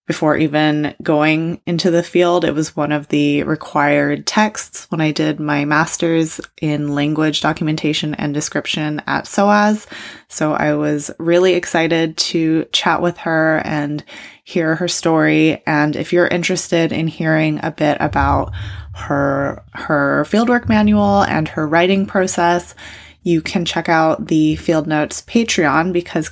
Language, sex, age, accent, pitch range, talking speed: English, female, 20-39, American, 150-175 Hz, 145 wpm